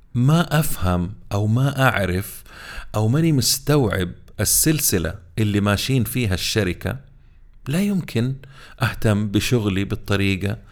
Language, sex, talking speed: Arabic, male, 100 wpm